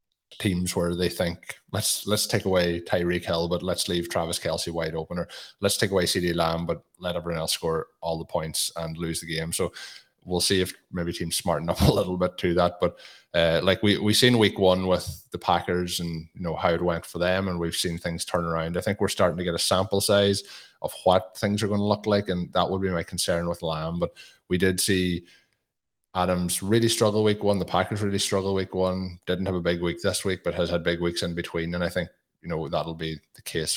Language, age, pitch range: English, 20-39, 85-100 Hz